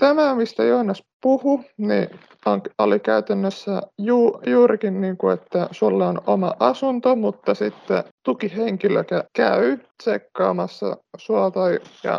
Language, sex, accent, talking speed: Finnish, male, native, 120 wpm